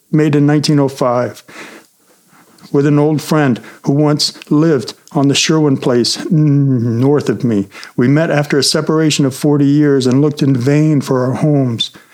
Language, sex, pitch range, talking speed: English, male, 145-175 Hz, 160 wpm